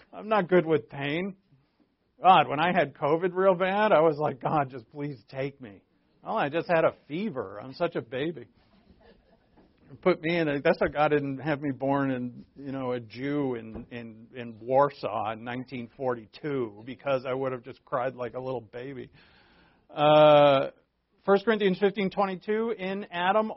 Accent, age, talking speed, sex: American, 50-69, 180 wpm, male